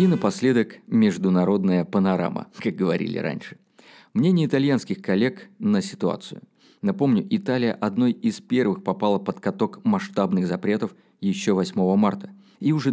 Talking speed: 125 wpm